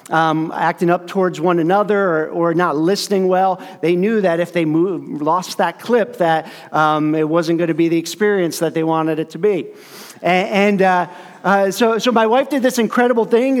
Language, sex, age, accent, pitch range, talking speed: English, male, 40-59, American, 170-220 Hz, 205 wpm